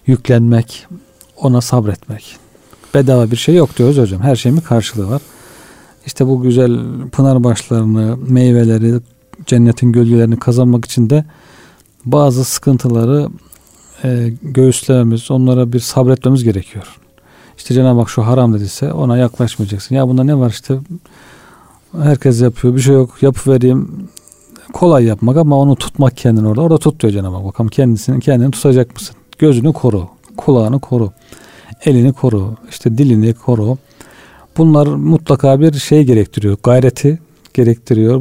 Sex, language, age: male, Turkish, 40-59